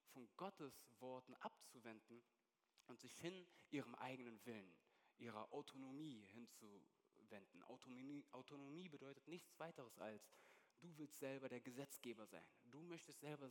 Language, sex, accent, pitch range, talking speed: German, male, German, 120-160 Hz, 120 wpm